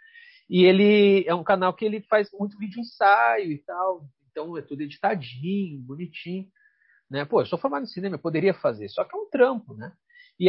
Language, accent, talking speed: Portuguese, Brazilian, 200 wpm